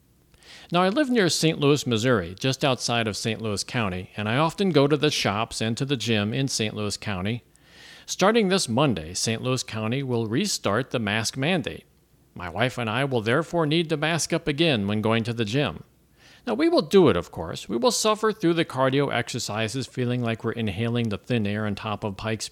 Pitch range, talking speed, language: 115-165 Hz, 215 wpm, English